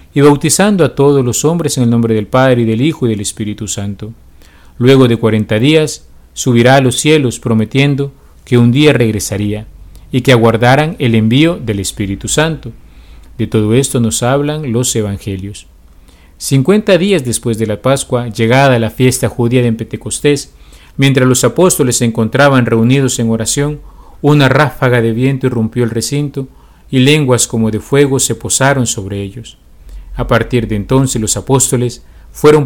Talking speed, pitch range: 165 wpm, 110-135 Hz